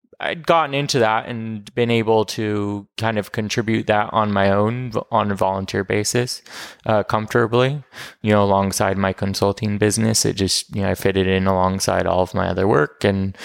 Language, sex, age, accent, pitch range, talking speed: English, male, 20-39, American, 100-120 Hz, 185 wpm